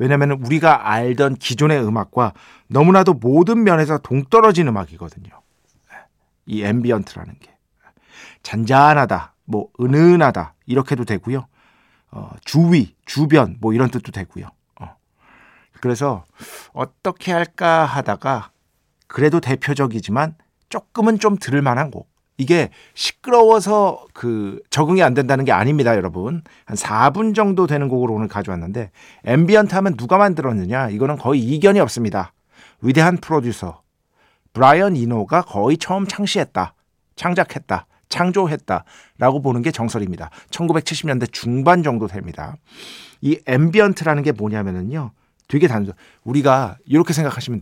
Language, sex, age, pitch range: Korean, male, 40-59, 110-160 Hz